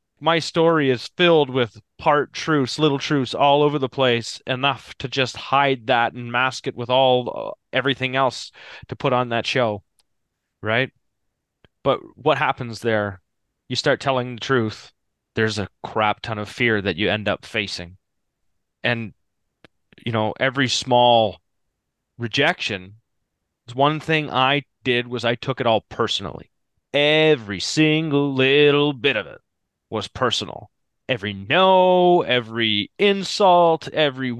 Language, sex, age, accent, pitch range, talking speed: English, male, 30-49, American, 105-140 Hz, 140 wpm